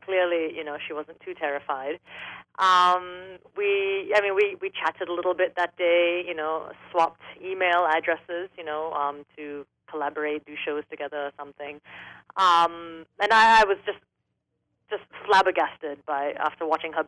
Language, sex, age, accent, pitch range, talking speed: English, female, 30-49, American, 150-175 Hz, 160 wpm